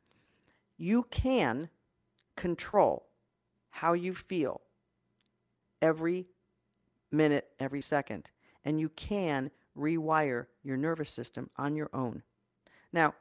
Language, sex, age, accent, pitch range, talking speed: English, female, 40-59, American, 145-185 Hz, 95 wpm